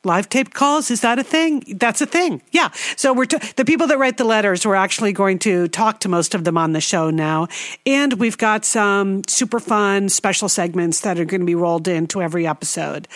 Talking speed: 230 wpm